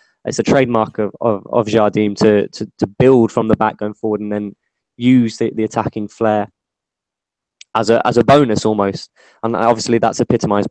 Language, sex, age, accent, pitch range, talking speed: English, male, 20-39, British, 105-125 Hz, 185 wpm